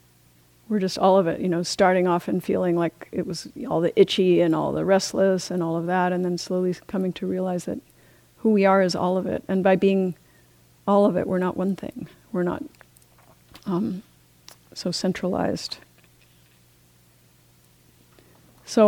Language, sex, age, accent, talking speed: English, female, 50-69, American, 175 wpm